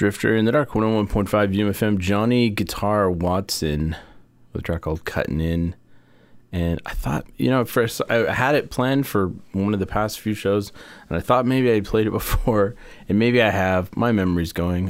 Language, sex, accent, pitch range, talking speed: English, male, American, 80-105 Hz, 195 wpm